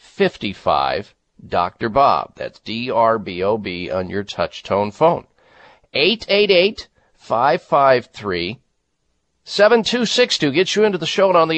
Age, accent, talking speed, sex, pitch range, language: 50-69, American, 170 wpm, male, 110-150 Hz, English